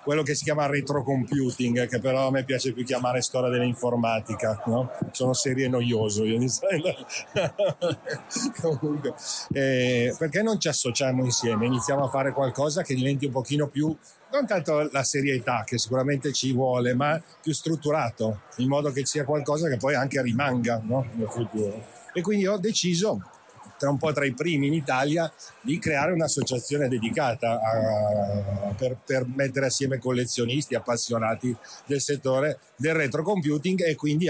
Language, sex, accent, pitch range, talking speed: Italian, male, native, 120-145 Hz, 145 wpm